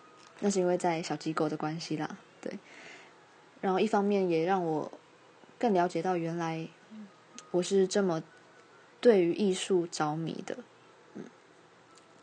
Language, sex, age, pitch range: Chinese, female, 20-39, 170-205 Hz